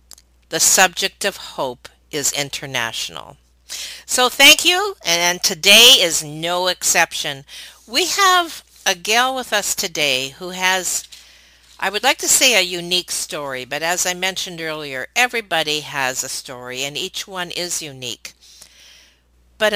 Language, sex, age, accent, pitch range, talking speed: English, female, 50-69, American, 135-185 Hz, 140 wpm